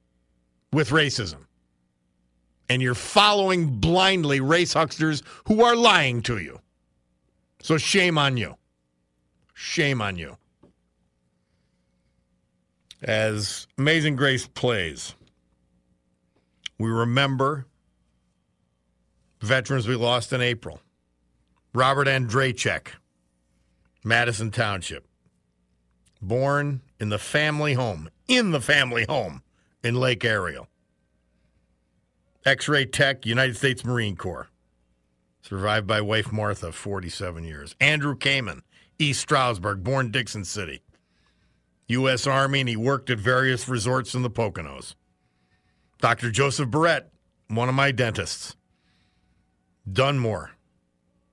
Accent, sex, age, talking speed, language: American, male, 50-69, 100 wpm, English